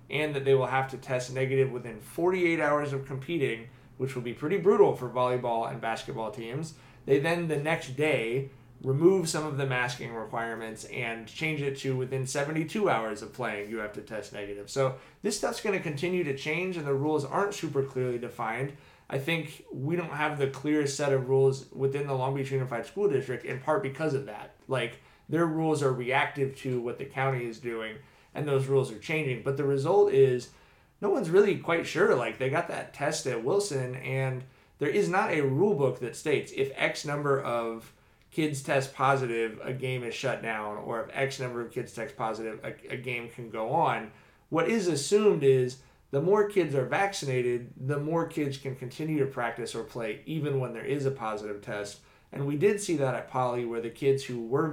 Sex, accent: male, American